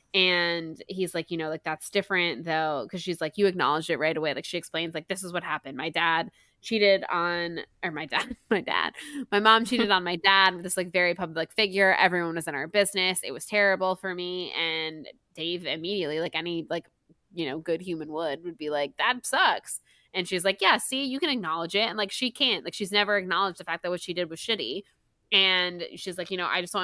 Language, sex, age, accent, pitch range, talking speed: English, female, 20-39, American, 160-190 Hz, 235 wpm